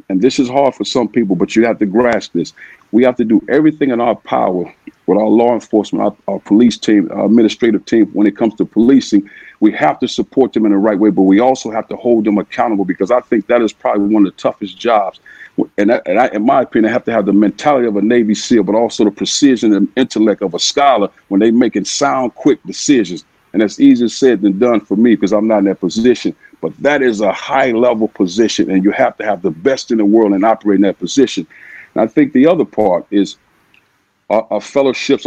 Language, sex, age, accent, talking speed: English, male, 50-69, American, 245 wpm